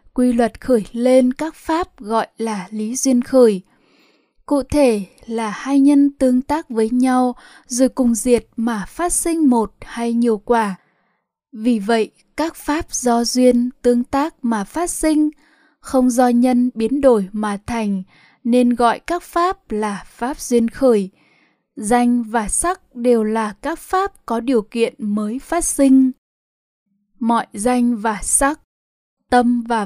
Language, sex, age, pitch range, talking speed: Vietnamese, female, 10-29, 225-275 Hz, 150 wpm